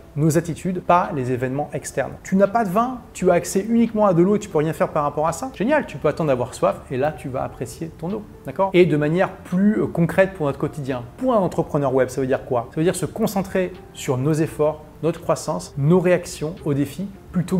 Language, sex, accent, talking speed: French, male, French, 245 wpm